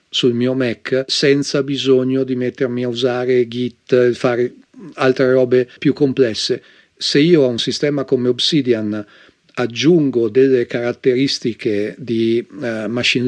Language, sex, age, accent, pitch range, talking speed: Italian, male, 40-59, native, 120-135 Hz, 120 wpm